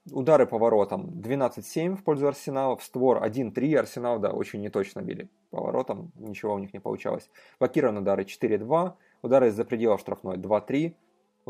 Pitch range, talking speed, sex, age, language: 105-150 Hz, 150 wpm, male, 20-39, Russian